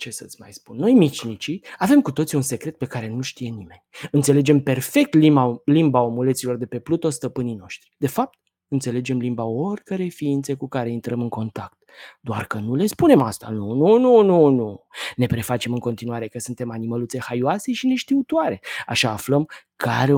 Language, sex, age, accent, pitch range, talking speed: Romanian, male, 20-39, native, 120-165 Hz, 180 wpm